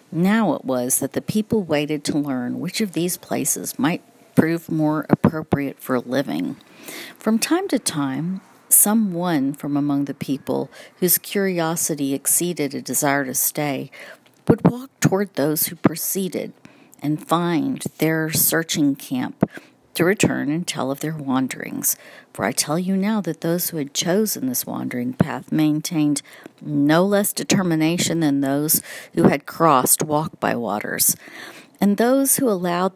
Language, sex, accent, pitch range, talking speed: English, female, American, 150-200 Hz, 150 wpm